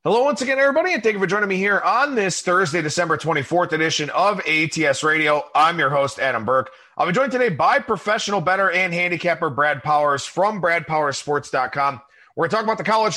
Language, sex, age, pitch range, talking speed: English, male, 30-49, 150-205 Hz, 195 wpm